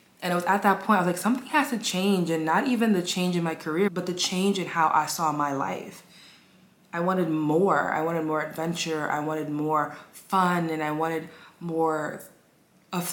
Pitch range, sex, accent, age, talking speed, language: 150-180 Hz, female, American, 20-39, 210 wpm, English